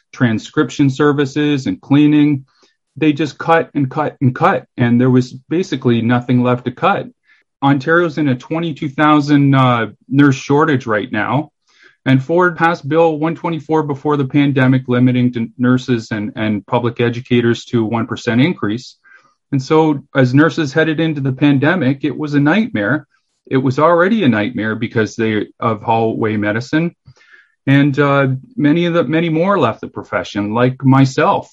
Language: English